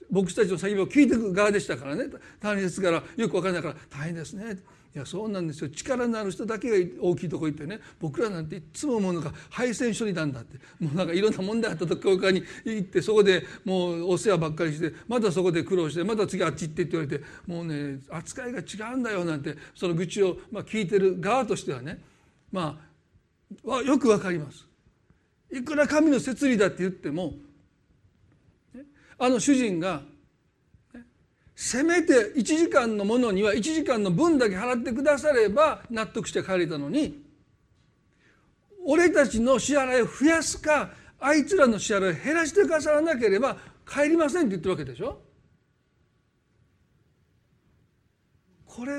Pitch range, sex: 175-260 Hz, male